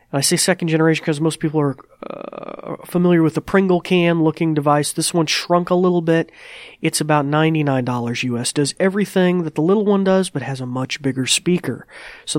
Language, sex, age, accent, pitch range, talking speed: English, male, 30-49, American, 135-175 Hz, 190 wpm